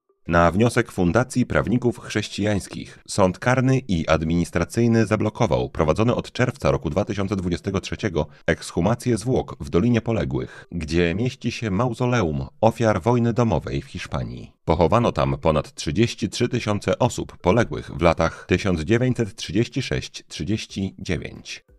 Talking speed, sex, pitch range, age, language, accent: 105 wpm, male, 85-115 Hz, 40-59, Polish, native